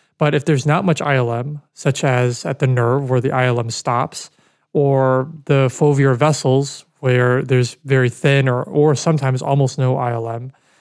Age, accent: 20-39, American